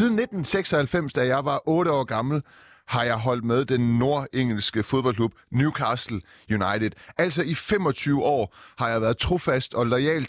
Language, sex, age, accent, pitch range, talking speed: Danish, male, 30-49, native, 110-150 Hz, 155 wpm